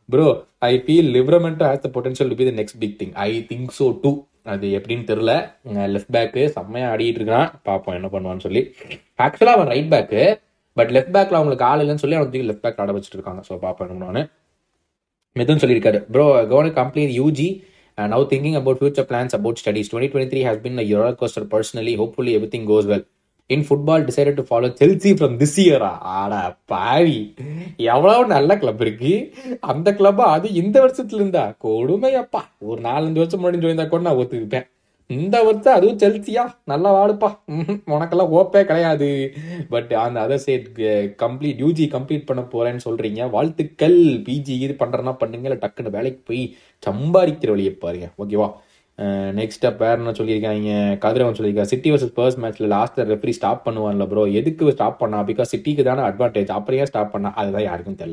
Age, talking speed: 20-39, 150 wpm